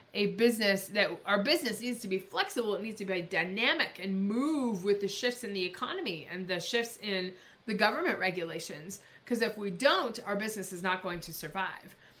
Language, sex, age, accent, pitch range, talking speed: English, female, 20-39, American, 195-250 Hz, 195 wpm